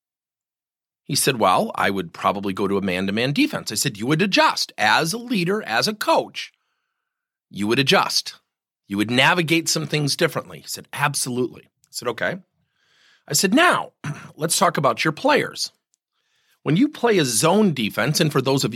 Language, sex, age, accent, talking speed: English, male, 40-59, American, 175 wpm